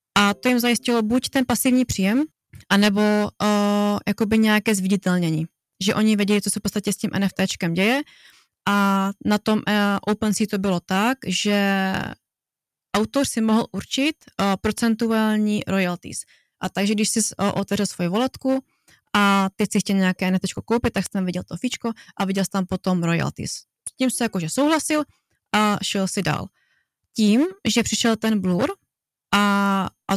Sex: female